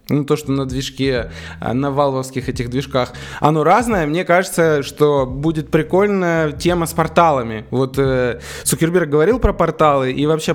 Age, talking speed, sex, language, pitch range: 20-39, 155 wpm, male, Russian, 135-170 Hz